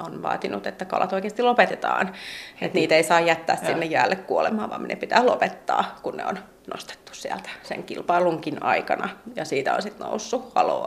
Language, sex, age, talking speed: Finnish, female, 30-49, 175 wpm